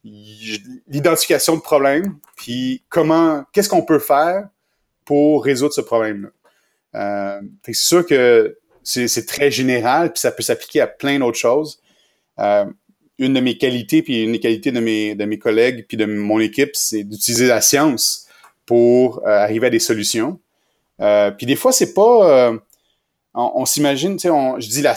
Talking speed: 180 wpm